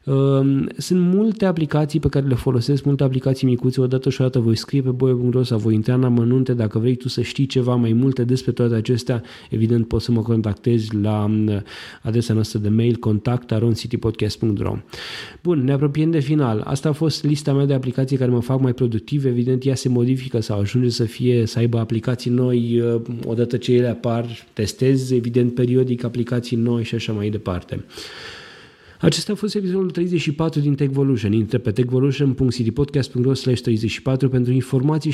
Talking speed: 170 wpm